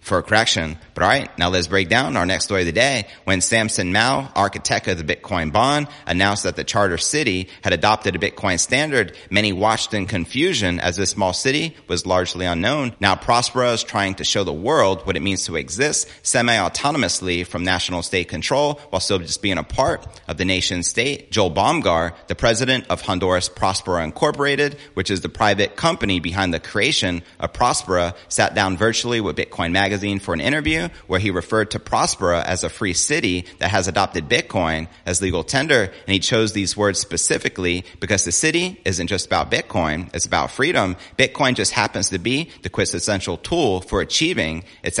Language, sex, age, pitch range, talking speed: English, male, 30-49, 90-110 Hz, 190 wpm